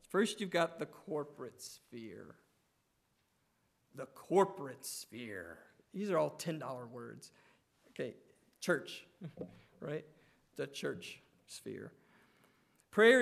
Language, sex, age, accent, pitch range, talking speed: English, male, 40-59, American, 145-185 Hz, 95 wpm